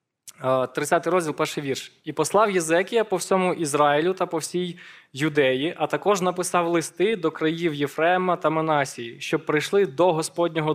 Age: 20-39